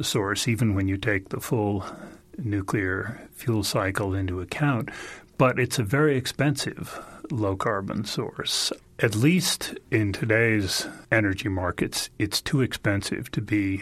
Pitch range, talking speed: 100-120 Hz, 130 wpm